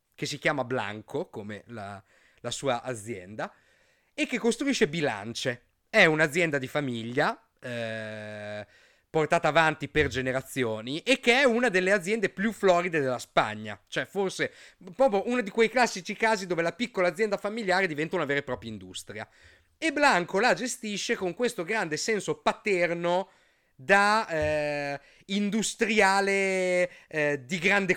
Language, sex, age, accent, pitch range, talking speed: Italian, male, 30-49, native, 140-205 Hz, 140 wpm